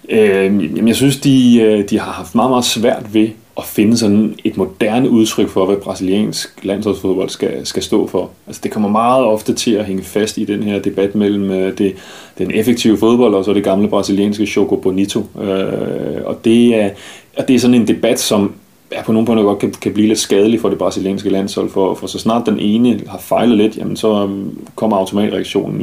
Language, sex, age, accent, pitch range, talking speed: Danish, male, 30-49, native, 95-105 Hz, 205 wpm